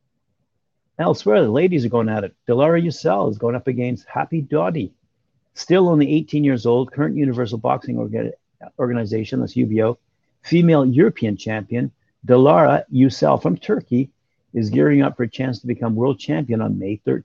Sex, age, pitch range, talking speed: male, 50-69, 110-135 Hz, 155 wpm